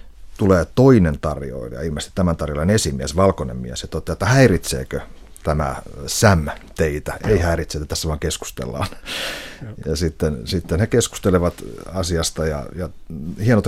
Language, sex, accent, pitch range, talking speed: Finnish, male, native, 80-100 Hz, 135 wpm